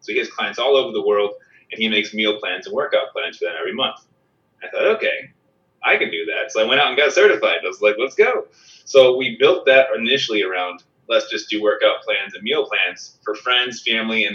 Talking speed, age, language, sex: 240 wpm, 20-39, English, male